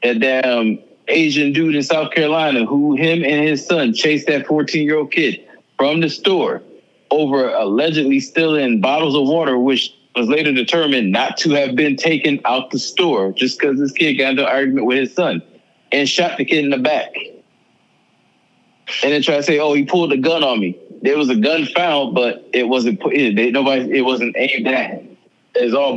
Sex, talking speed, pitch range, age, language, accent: male, 205 wpm, 135-175 Hz, 20-39, English, American